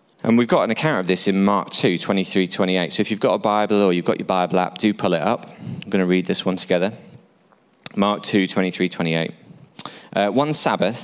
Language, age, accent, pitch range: English, 20-39, British, 90-105 Hz